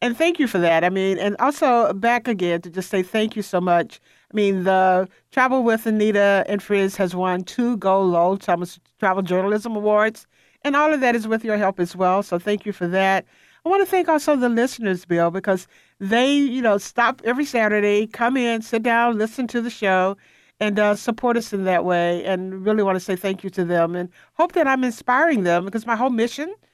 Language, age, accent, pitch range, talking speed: English, 60-79, American, 180-235 Hz, 220 wpm